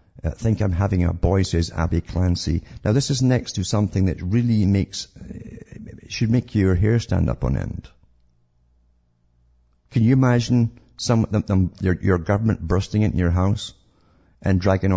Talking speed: 160 wpm